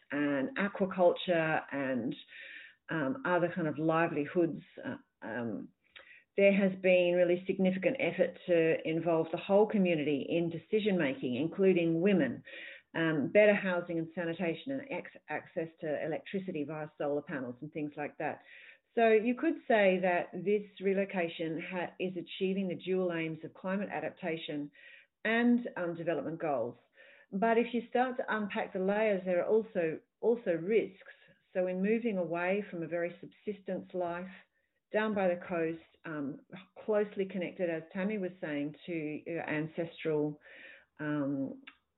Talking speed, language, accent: 135 wpm, English, Australian